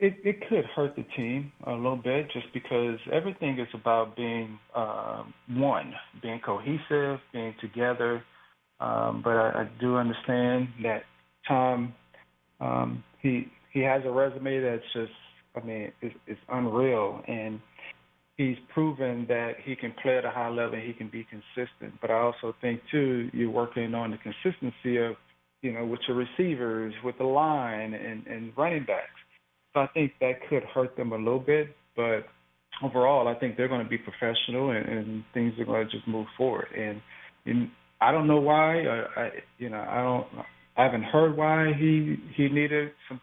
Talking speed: 180 wpm